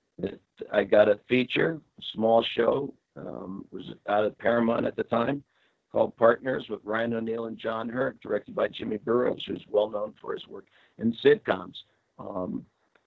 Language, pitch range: English, 110-120 Hz